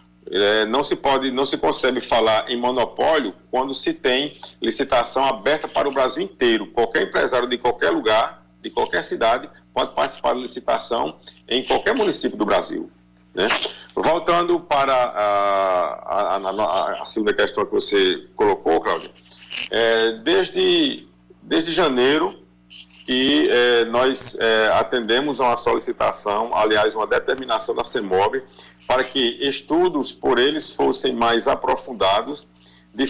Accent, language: Brazilian, Portuguese